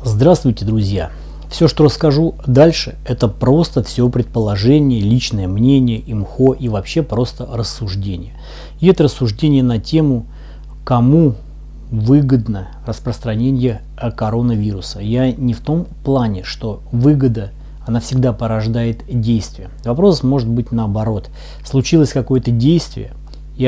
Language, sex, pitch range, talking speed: Russian, male, 105-135 Hz, 115 wpm